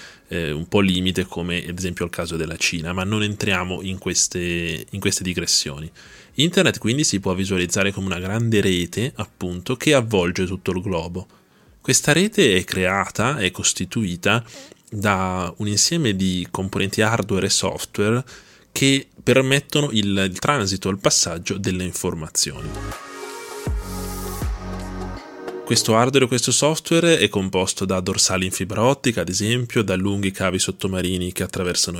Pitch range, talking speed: 90-115 Hz, 145 wpm